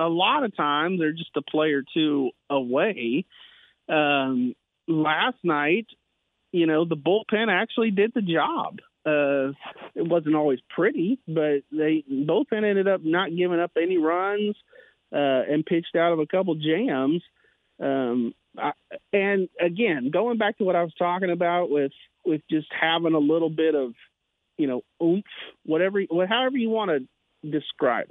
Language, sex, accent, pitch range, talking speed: English, male, American, 140-180 Hz, 155 wpm